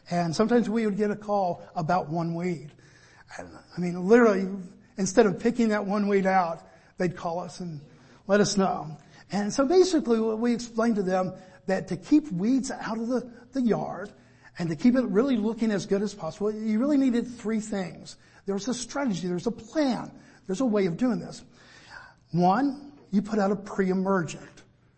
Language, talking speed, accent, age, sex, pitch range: English, 185 wpm, American, 60-79, male, 185-235 Hz